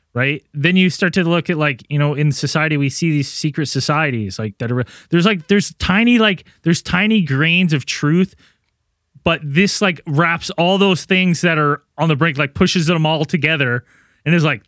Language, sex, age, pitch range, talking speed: English, male, 20-39, 140-175 Hz, 205 wpm